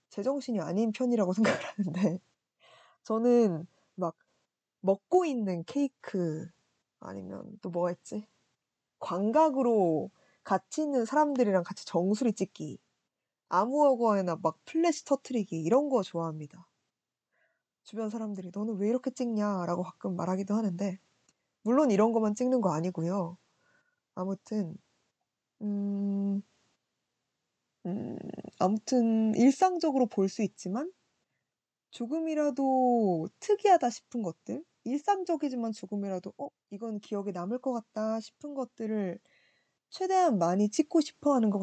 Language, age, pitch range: Korean, 20-39, 190-265 Hz